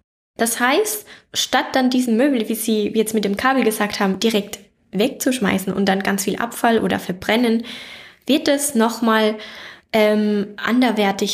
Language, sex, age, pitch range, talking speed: German, female, 10-29, 195-240 Hz, 145 wpm